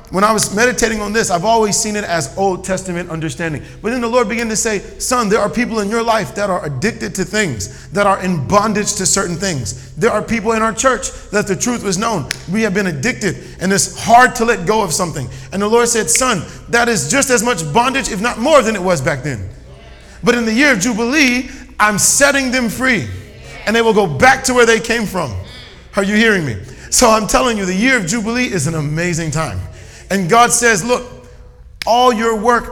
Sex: male